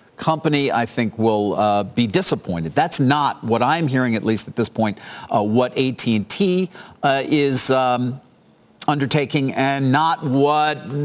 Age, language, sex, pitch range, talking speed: 50-69, English, male, 105-140 Hz, 140 wpm